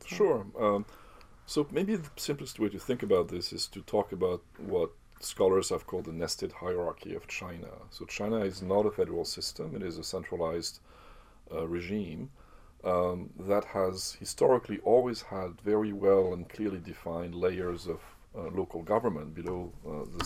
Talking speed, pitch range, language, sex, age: 165 wpm, 85-105 Hz, English, male, 40-59